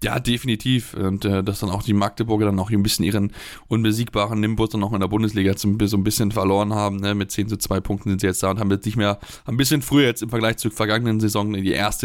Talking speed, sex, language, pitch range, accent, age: 270 wpm, male, German, 105-120 Hz, German, 10-29